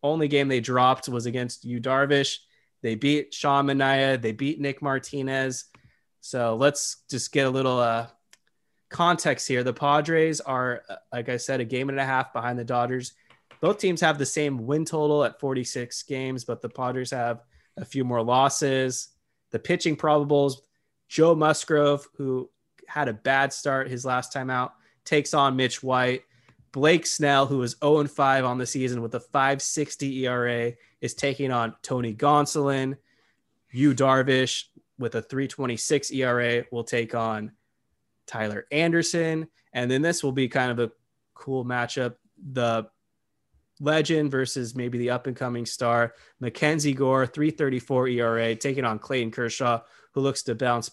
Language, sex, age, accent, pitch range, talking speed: English, male, 20-39, American, 120-140 Hz, 155 wpm